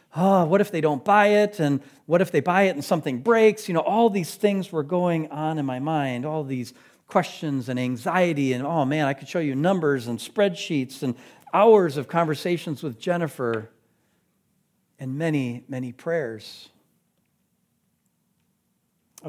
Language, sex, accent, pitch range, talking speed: English, male, American, 135-190 Hz, 165 wpm